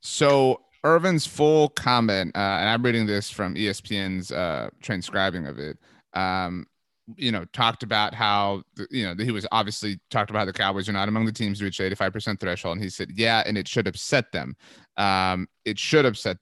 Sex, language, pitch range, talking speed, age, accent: male, English, 100-120 Hz, 195 wpm, 30-49, American